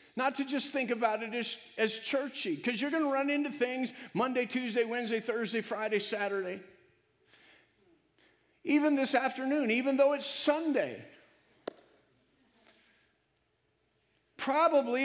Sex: male